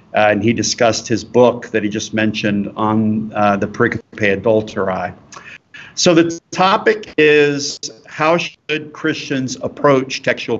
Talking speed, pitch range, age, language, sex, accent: 135 wpm, 115-140 Hz, 50-69, English, male, American